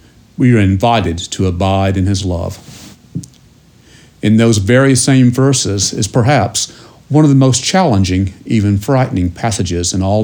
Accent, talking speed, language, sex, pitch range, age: American, 145 wpm, English, male, 100-125 Hz, 50-69